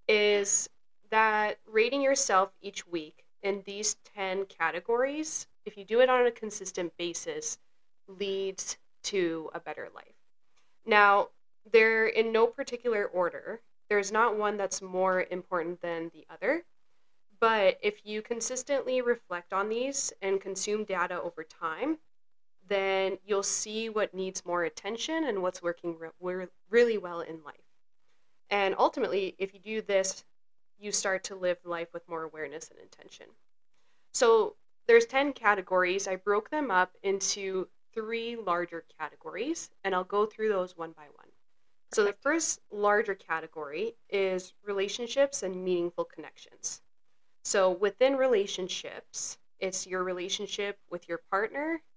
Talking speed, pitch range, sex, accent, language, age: 135 wpm, 185-235 Hz, female, American, English, 20-39